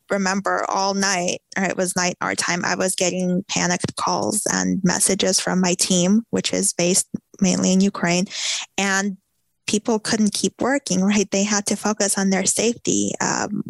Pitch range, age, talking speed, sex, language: 175-195 Hz, 20-39, 170 wpm, female, English